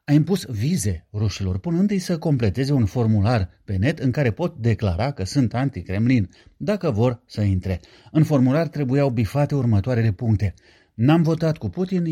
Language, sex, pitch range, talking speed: Romanian, male, 105-145 Hz, 165 wpm